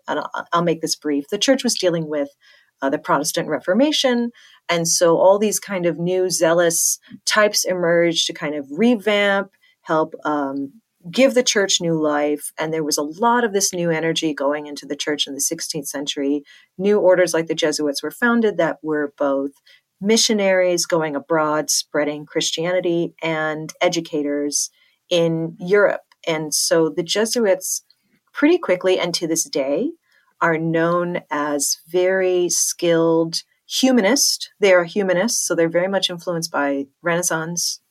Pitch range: 155-195 Hz